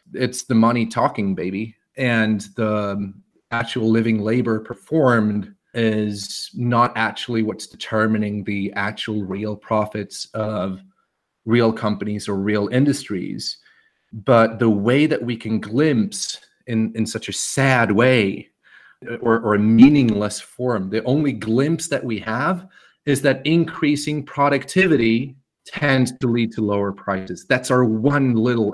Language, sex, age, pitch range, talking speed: English, male, 30-49, 110-130 Hz, 135 wpm